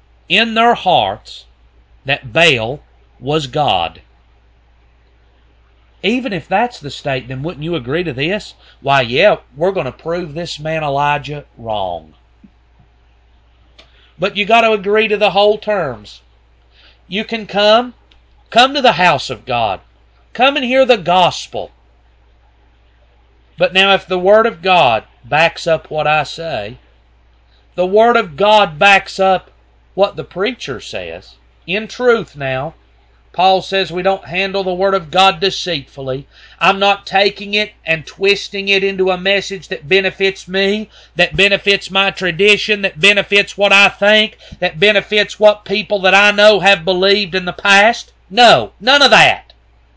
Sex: male